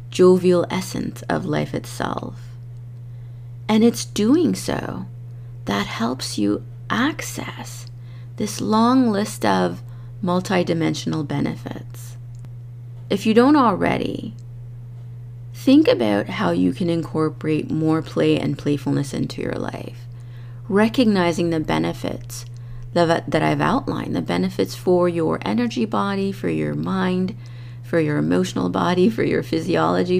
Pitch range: 120-175 Hz